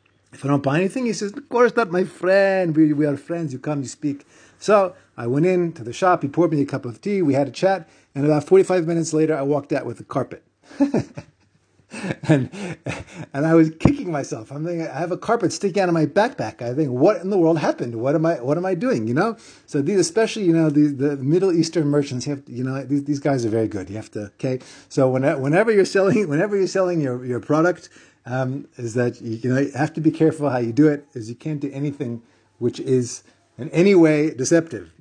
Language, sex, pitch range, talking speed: English, male, 120-160 Hz, 245 wpm